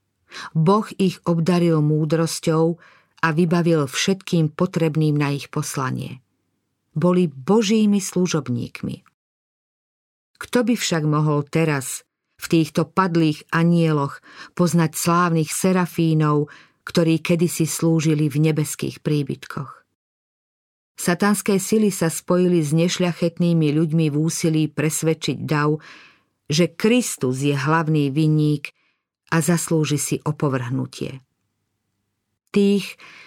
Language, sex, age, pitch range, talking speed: Slovak, female, 50-69, 150-180 Hz, 95 wpm